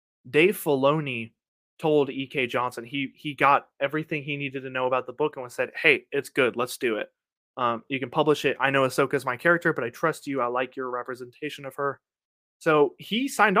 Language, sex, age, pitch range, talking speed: English, male, 20-39, 125-155 Hz, 215 wpm